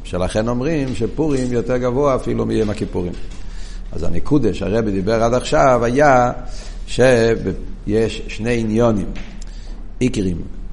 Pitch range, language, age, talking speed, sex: 95-125 Hz, Hebrew, 60-79, 105 wpm, male